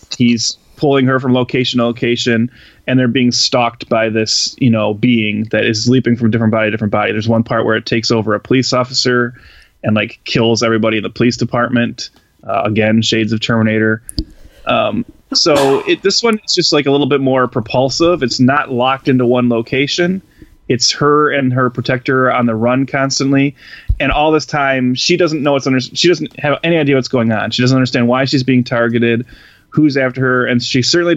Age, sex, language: 20-39, male, English